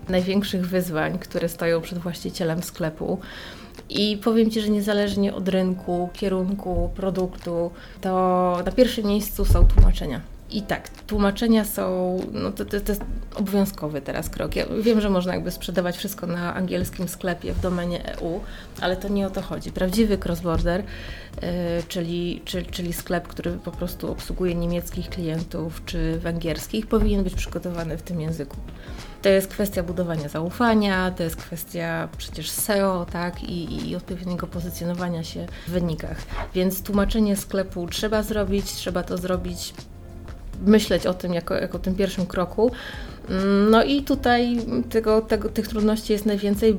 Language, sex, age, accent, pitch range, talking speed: Polish, female, 20-39, native, 170-205 Hz, 145 wpm